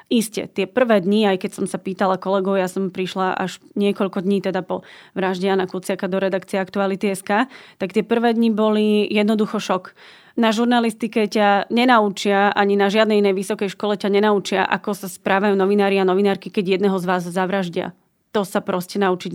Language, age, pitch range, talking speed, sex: Slovak, 30-49, 195-220 Hz, 180 wpm, female